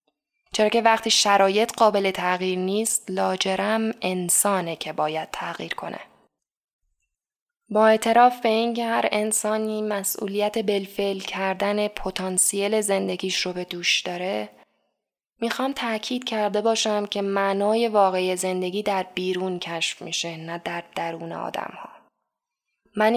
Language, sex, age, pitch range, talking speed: Persian, female, 10-29, 190-225 Hz, 120 wpm